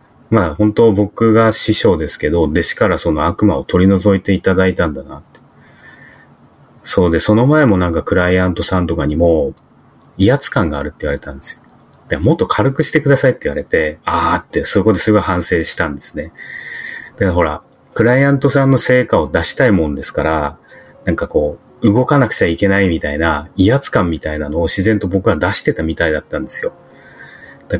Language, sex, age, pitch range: Japanese, male, 30-49, 85-115 Hz